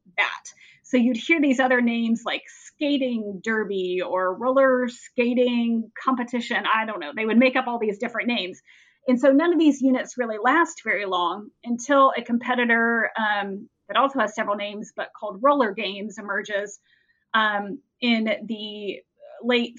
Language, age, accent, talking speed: English, 30-49, American, 160 wpm